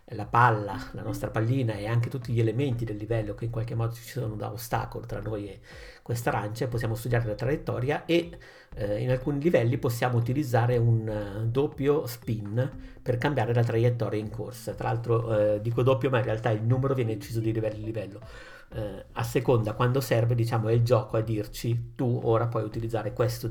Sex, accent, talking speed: male, native, 195 wpm